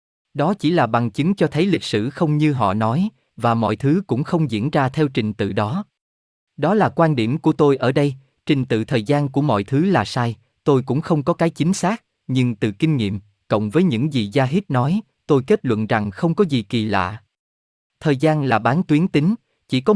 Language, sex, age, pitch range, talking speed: Vietnamese, male, 20-39, 110-160 Hz, 230 wpm